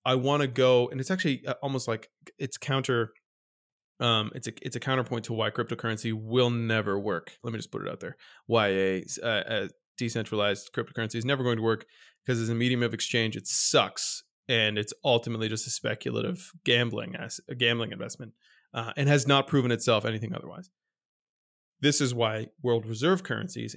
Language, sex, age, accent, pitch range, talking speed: English, male, 20-39, American, 115-135 Hz, 185 wpm